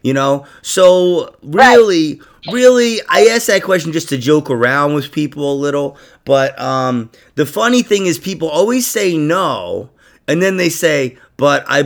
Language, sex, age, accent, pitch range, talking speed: English, male, 30-49, American, 140-210 Hz, 165 wpm